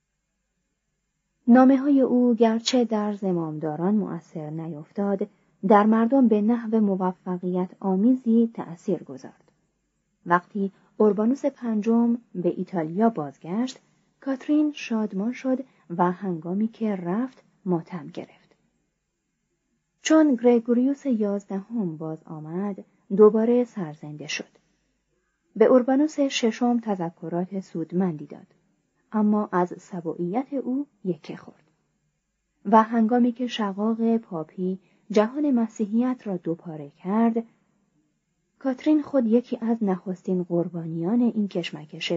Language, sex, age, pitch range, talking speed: Persian, female, 30-49, 180-235 Hz, 100 wpm